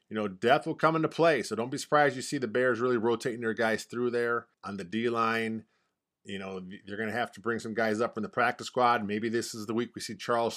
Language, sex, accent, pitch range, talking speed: English, male, American, 115-145 Hz, 265 wpm